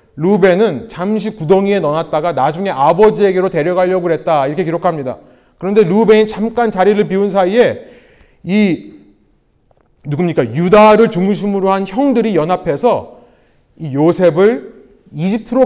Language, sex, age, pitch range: Korean, male, 30-49, 180-240 Hz